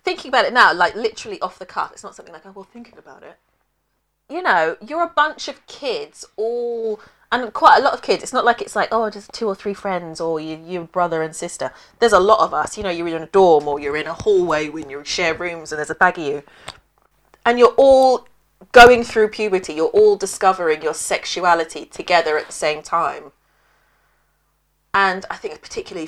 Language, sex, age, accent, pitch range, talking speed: English, female, 30-49, British, 165-235 Hz, 215 wpm